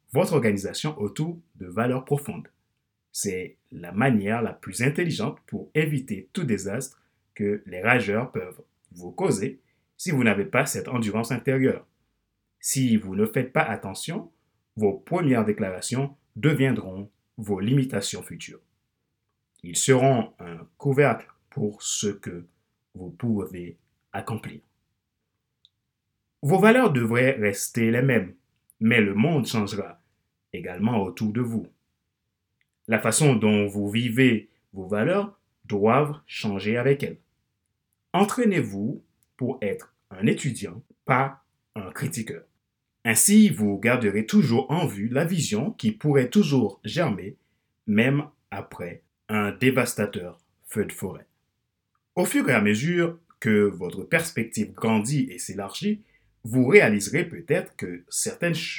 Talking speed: 120 wpm